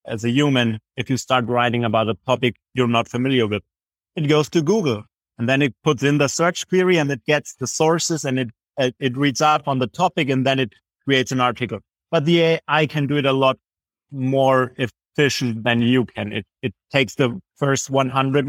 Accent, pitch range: German, 120-150 Hz